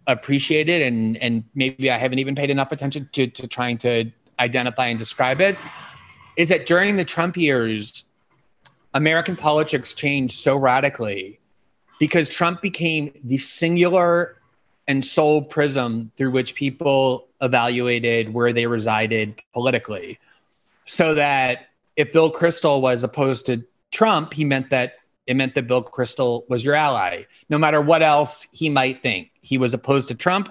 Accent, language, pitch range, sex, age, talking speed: American, English, 120-155 Hz, male, 30-49, 150 wpm